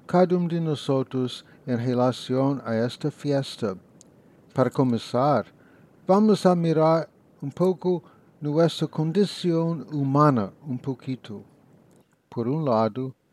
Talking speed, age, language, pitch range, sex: 110 wpm, 60-79, English, 130-155 Hz, male